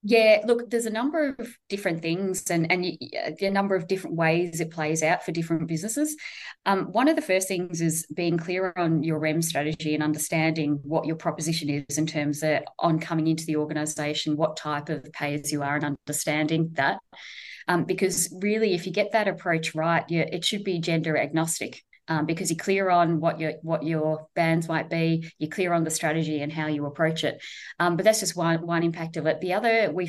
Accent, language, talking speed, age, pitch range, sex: Australian, English, 210 wpm, 20-39, 155-170 Hz, female